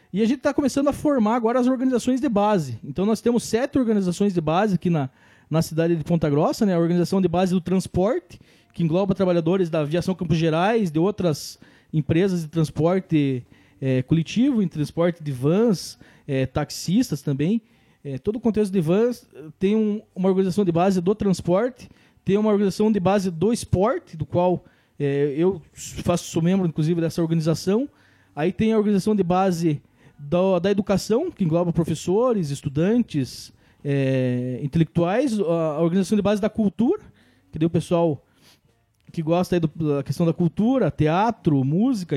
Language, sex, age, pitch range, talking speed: Portuguese, male, 20-39, 160-215 Hz, 165 wpm